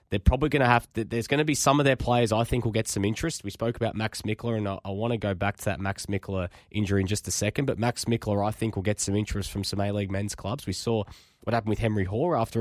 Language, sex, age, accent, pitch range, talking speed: English, male, 20-39, Australian, 105-135 Hz, 295 wpm